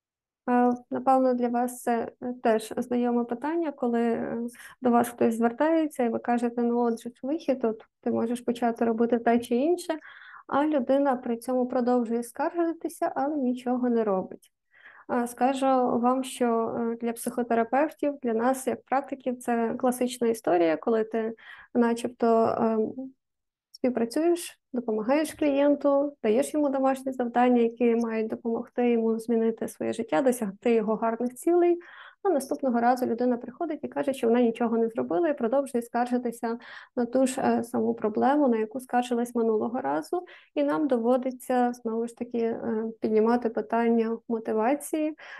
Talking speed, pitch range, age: 135 wpm, 230-265 Hz, 20-39